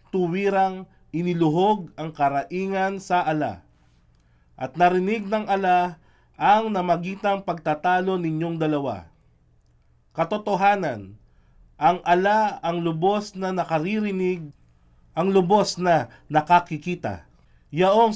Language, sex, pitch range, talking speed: Filipino, male, 140-190 Hz, 90 wpm